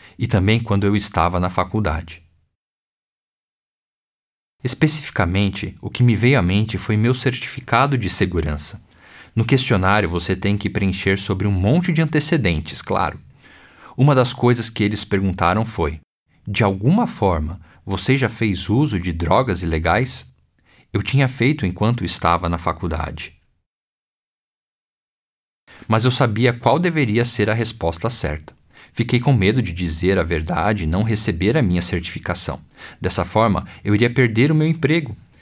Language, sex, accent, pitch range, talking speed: Portuguese, male, Brazilian, 90-130 Hz, 145 wpm